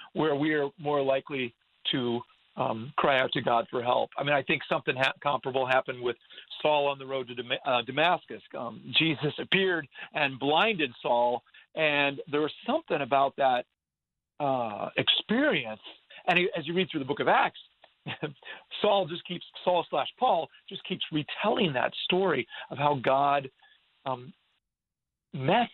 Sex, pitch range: male, 135-175 Hz